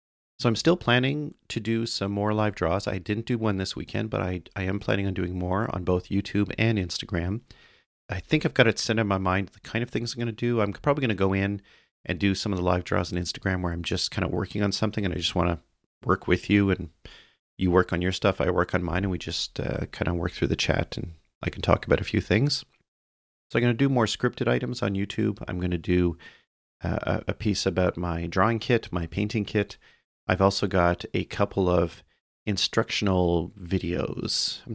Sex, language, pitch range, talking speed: male, English, 90-110 Hz, 240 wpm